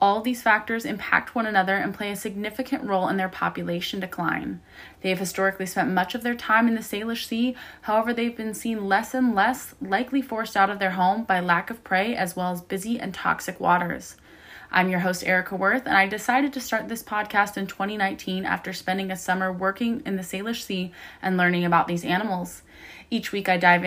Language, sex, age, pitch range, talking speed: English, female, 20-39, 185-220 Hz, 210 wpm